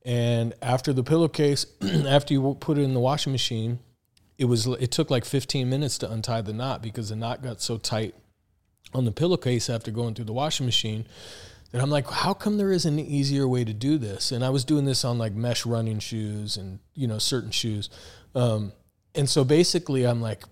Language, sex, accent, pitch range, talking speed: English, male, American, 110-140 Hz, 210 wpm